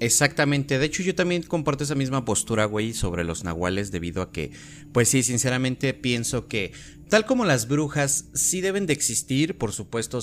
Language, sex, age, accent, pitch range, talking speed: Spanish, male, 30-49, Mexican, 100-135 Hz, 180 wpm